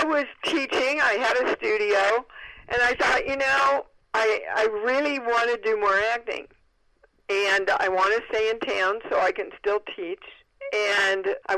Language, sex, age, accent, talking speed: English, female, 50-69, American, 175 wpm